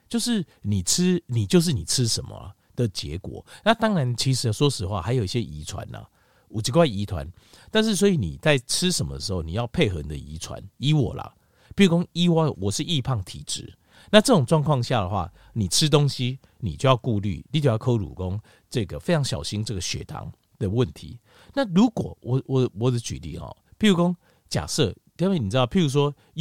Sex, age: male, 50-69